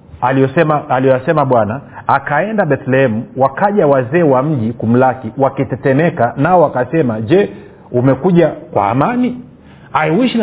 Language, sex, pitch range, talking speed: Swahili, male, 130-170 Hz, 110 wpm